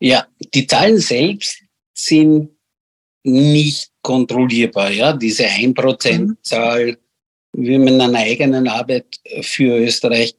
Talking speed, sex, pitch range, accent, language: 105 wpm, male, 125-150 Hz, Austrian, German